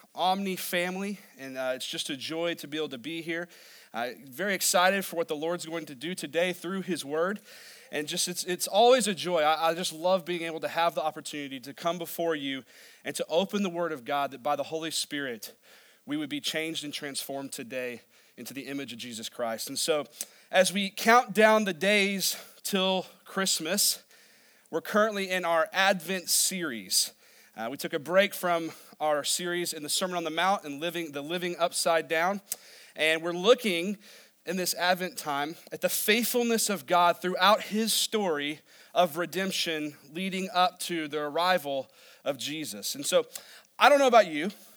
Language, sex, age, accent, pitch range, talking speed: English, male, 30-49, American, 155-195 Hz, 190 wpm